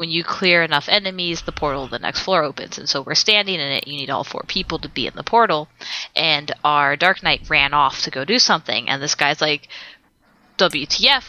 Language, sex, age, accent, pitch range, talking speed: English, female, 20-39, American, 150-185 Hz, 230 wpm